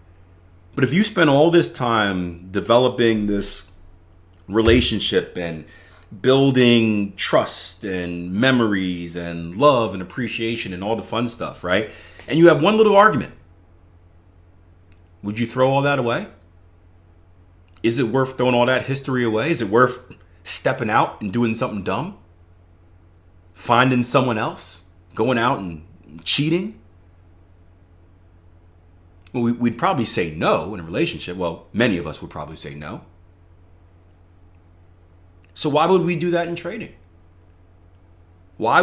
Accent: American